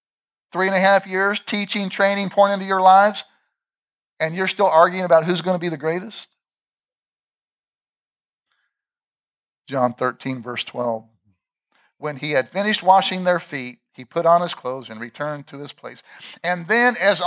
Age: 50-69